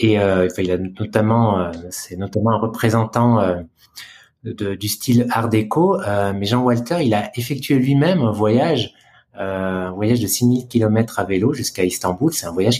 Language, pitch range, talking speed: French, 105-120 Hz, 180 wpm